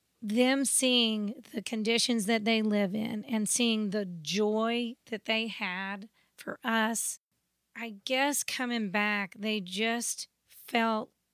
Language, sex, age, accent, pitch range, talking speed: English, female, 40-59, American, 205-230 Hz, 125 wpm